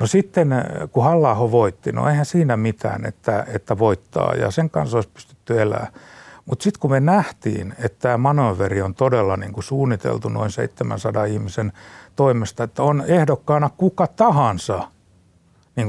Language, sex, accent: Finnish, male, native